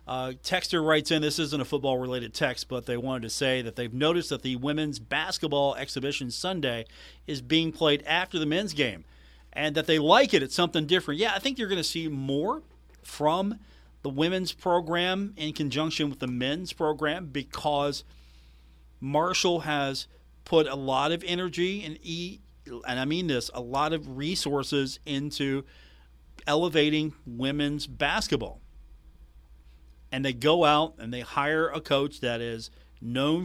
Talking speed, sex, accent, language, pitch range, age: 160 wpm, male, American, English, 120-155 Hz, 40-59